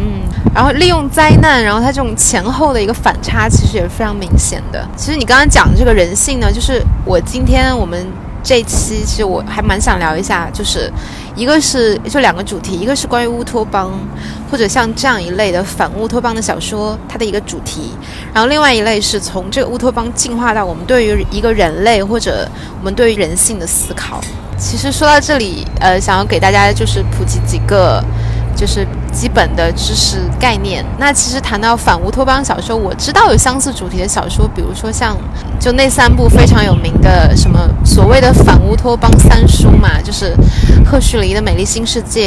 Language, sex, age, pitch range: Chinese, female, 20-39, 185-250 Hz